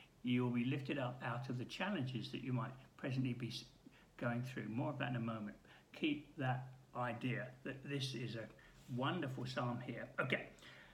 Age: 60-79